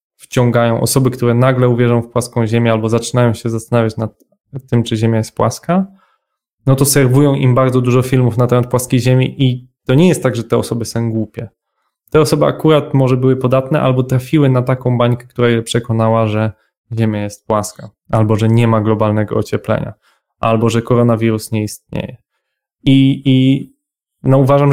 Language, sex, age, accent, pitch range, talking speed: Polish, male, 10-29, native, 115-130 Hz, 170 wpm